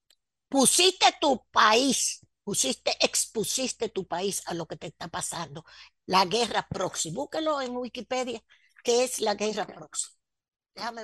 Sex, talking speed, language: female, 135 wpm, Spanish